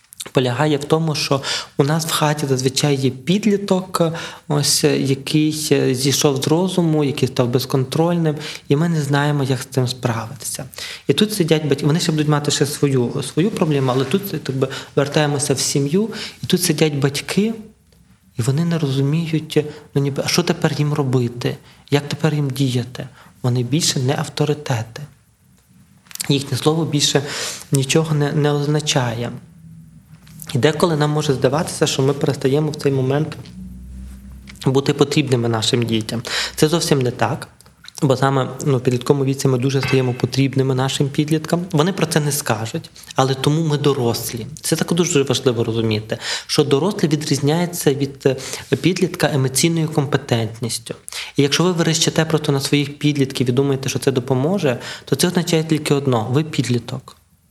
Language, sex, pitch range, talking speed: Ukrainian, male, 130-155 Hz, 155 wpm